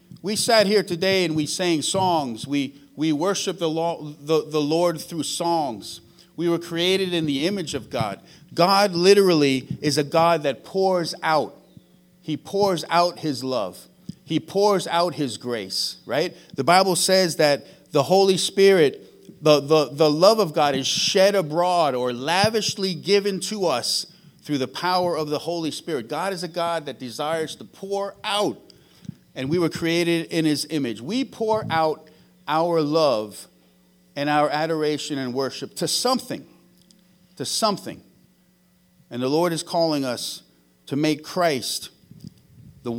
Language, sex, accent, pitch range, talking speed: English, male, American, 140-180 Hz, 160 wpm